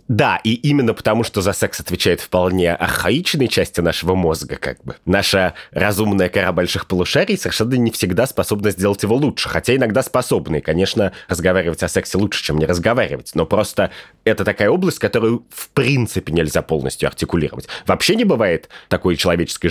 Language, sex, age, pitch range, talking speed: Russian, male, 30-49, 85-110 Hz, 165 wpm